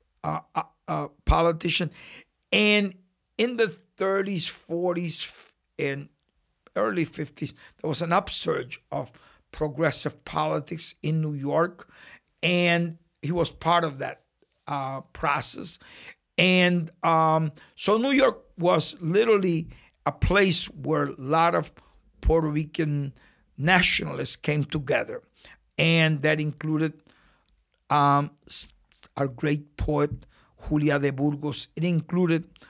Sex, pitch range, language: male, 145-175 Hz, English